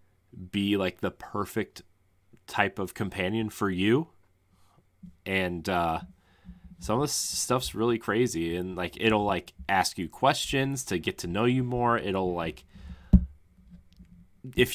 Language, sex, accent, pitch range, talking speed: English, male, American, 90-105 Hz, 135 wpm